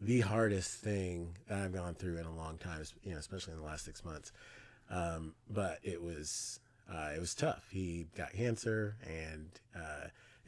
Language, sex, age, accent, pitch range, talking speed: English, male, 30-49, American, 90-115 Hz, 185 wpm